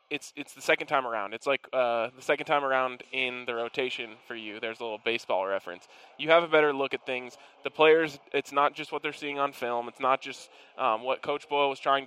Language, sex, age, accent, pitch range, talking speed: English, male, 20-39, American, 125-150 Hz, 245 wpm